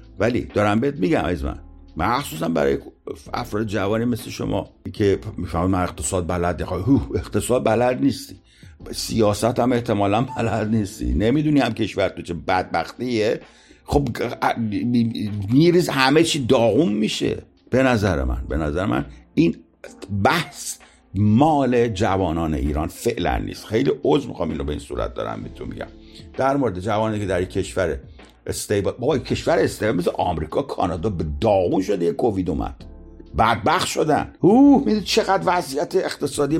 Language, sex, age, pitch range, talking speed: Persian, male, 60-79, 100-150 Hz, 140 wpm